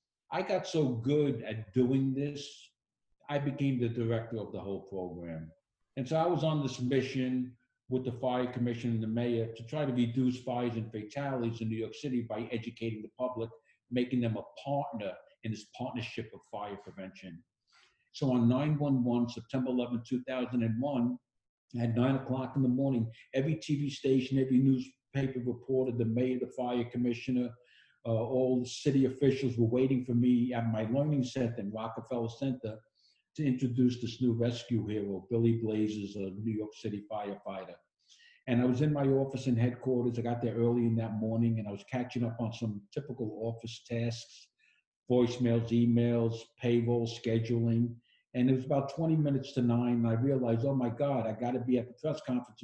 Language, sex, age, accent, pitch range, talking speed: English, male, 60-79, American, 115-130 Hz, 180 wpm